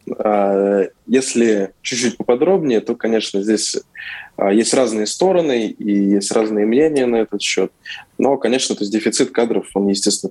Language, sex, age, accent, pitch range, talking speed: Russian, male, 20-39, native, 100-115 Hz, 130 wpm